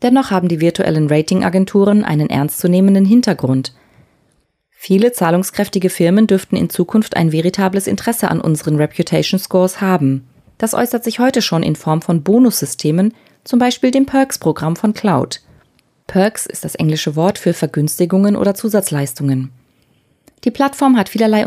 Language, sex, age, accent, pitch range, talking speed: German, female, 30-49, German, 160-210 Hz, 135 wpm